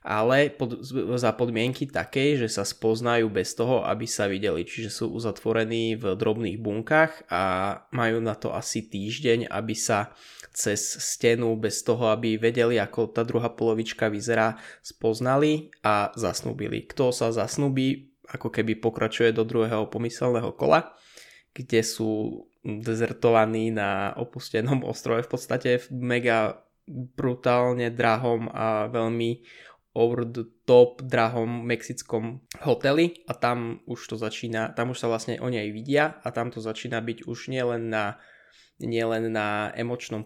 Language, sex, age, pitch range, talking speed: Czech, male, 20-39, 110-125 Hz, 140 wpm